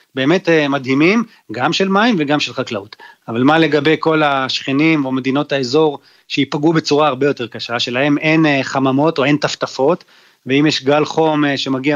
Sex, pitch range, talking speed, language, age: male, 140-170 Hz, 160 wpm, Hebrew, 30-49